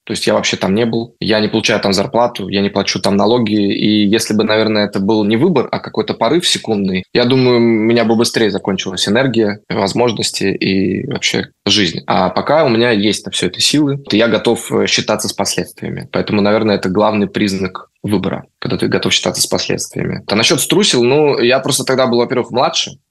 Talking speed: 200 wpm